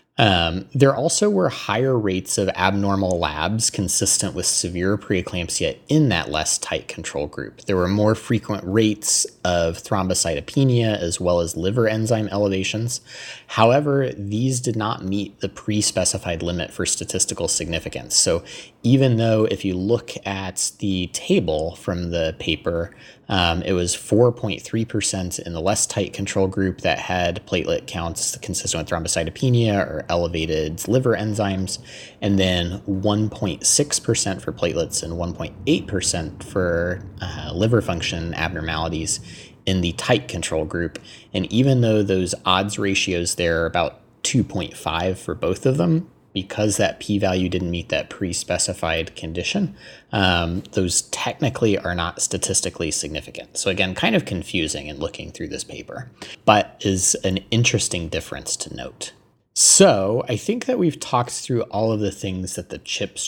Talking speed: 145 wpm